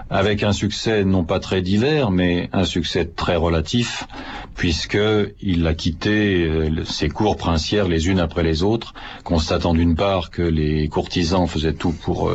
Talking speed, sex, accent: 160 wpm, male, French